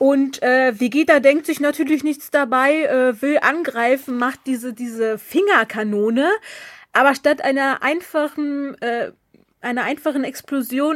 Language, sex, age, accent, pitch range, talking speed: German, female, 30-49, German, 235-295 Hz, 125 wpm